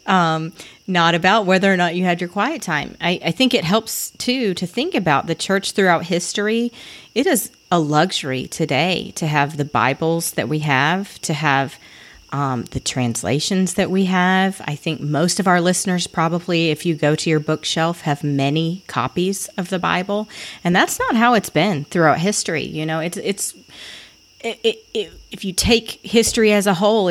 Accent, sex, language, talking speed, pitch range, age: American, female, English, 180 wpm, 150-195 Hz, 30-49